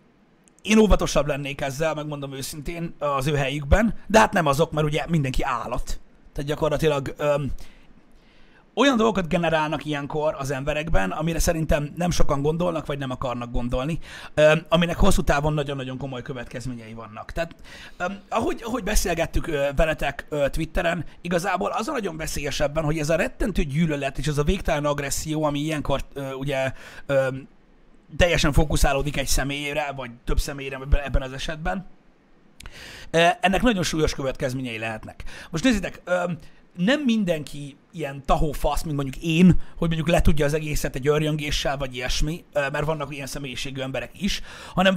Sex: male